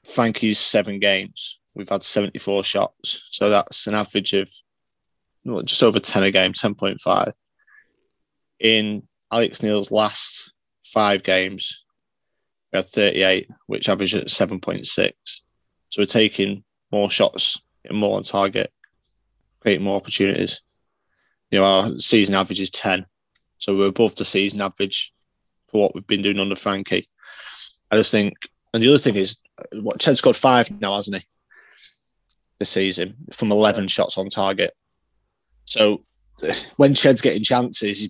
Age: 20-39